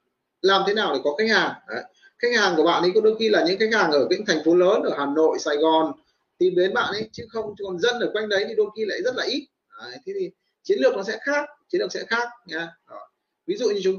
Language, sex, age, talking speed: Vietnamese, male, 20-39, 285 wpm